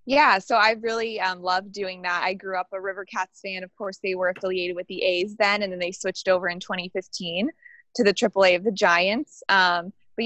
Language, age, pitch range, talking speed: English, 20-39, 180-200 Hz, 220 wpm